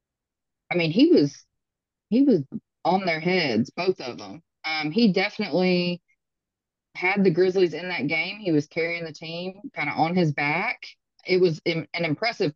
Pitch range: 155-185 Hz